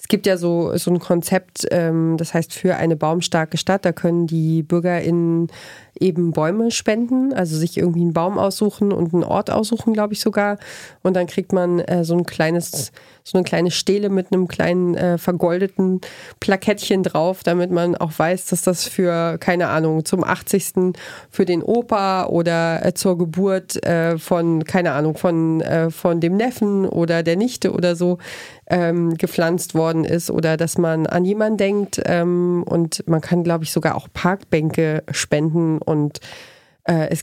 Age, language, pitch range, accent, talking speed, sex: 30-49, German, 165-185 Hz, German, 170 wpm, female